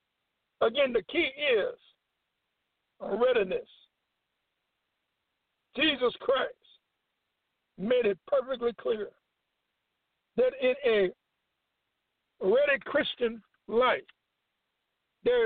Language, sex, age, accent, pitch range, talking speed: English, male, 60-79, American, 240-340 Hz, 70 wpm